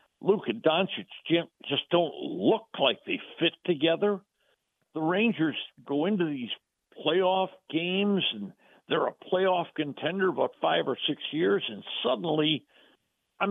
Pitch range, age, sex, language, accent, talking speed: 140-185 Hz, 60-79, male, English, American, 130 wpm